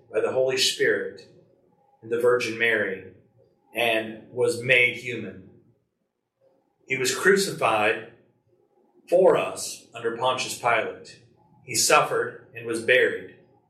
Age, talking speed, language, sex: 40-59, 110 wpm, English, male